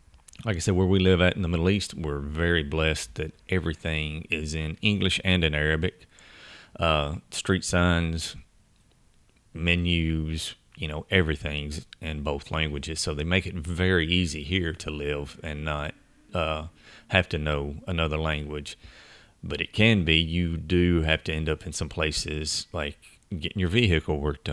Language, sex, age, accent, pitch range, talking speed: English, male, 30-49, American, 75-90 Hz, 165 wpm